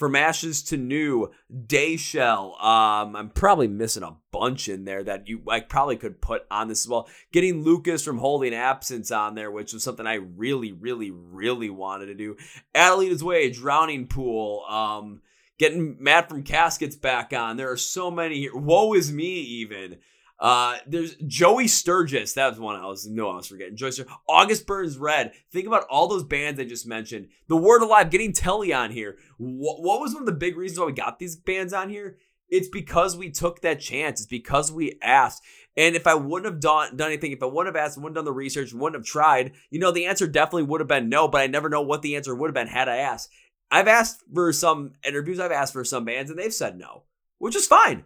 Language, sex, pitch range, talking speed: English, male, 120-175 Hz, 225 wpm